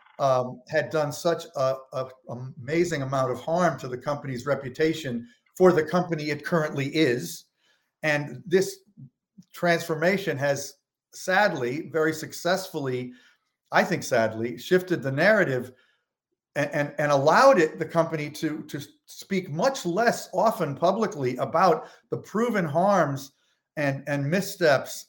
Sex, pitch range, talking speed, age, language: male, 140-180 Hz, 125 wpm, 50-69, English